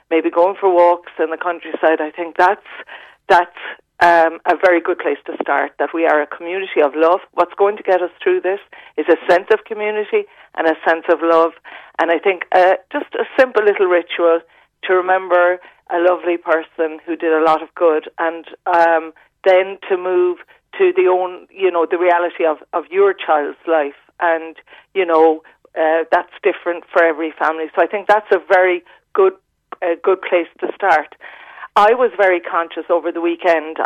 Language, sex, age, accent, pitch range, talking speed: English, female, 40-59, Irish, 165-185 Hz, 190 wpm